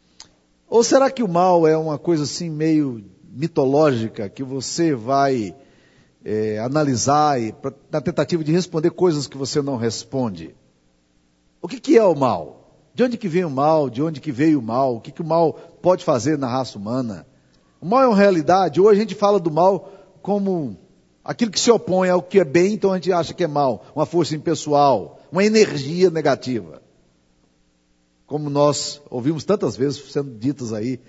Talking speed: 185 wpm